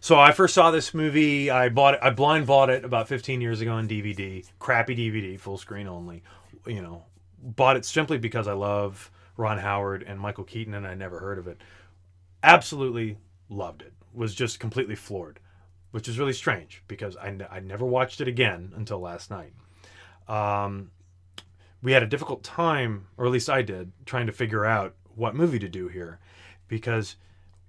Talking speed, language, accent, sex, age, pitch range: 185 wpm, English, American, male, 30-49, 95-125 Hz